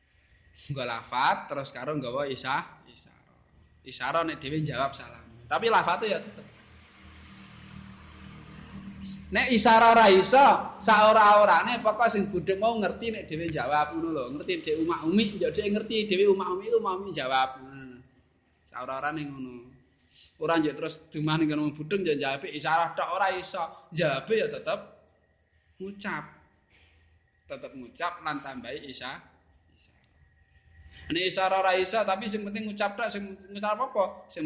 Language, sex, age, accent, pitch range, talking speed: Indonesian, male, 20-39, native, 120-190 Hz, 135 wpm